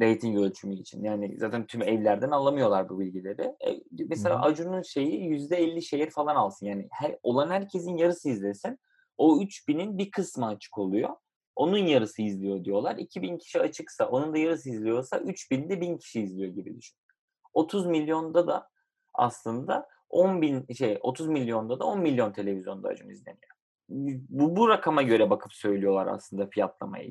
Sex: male